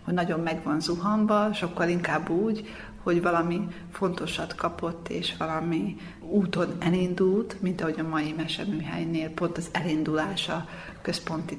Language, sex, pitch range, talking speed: Hungarian, female, 170-205 Hz, 130 wpm